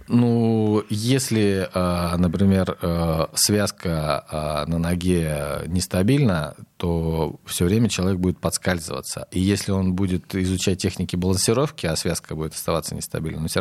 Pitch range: 80-100 Hz